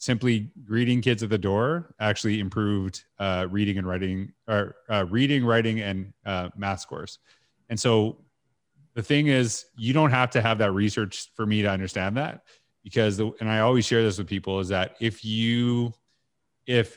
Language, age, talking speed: English, 30-49, 175 wpm